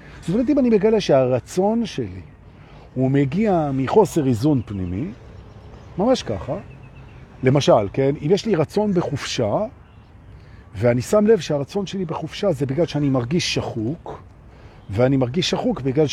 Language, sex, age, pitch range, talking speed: Hebrew, male, 50-69, 120-175 Hz, 135 wpm